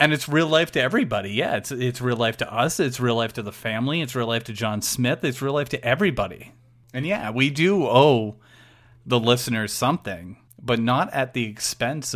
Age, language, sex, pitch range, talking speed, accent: 30-49, English, male, 115-125 Hz, 210 wpm, American